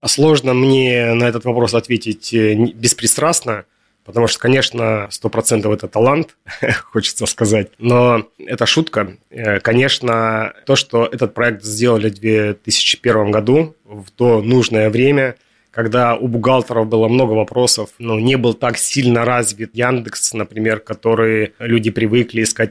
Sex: male